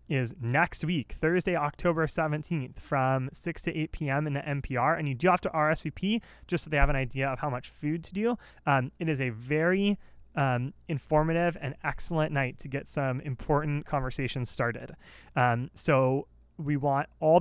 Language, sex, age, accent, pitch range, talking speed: English, male, 30-49, American, 135-170 Hz, 185 wpm